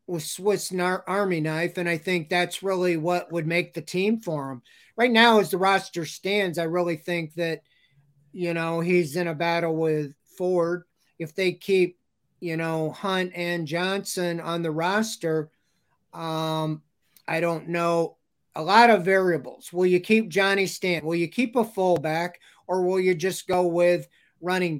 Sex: male